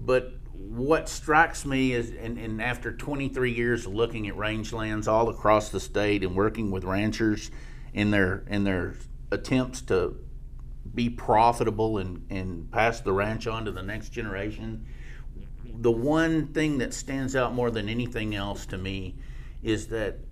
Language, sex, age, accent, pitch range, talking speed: English, male, 50-69, American, 100-120 Hz, 160 wpm